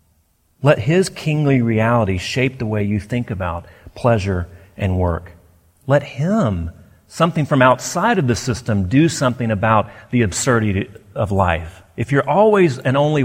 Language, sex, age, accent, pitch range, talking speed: English, male, 40-59, American, 95-130 Hz, 150 wpm